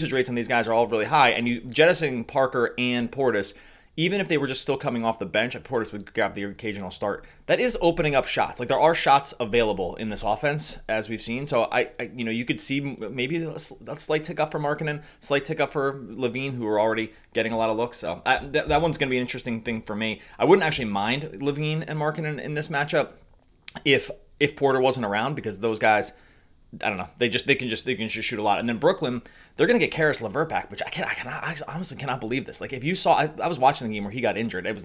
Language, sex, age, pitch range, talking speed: English, male, 30-49, 110-150 Hz, 270 wpm